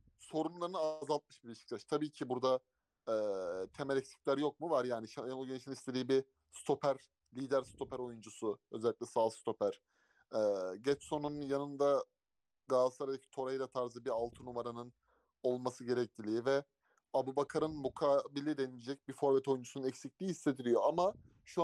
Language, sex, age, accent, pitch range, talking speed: Turkish, male, 30-49, native, 130-155 Hz, 130 wpm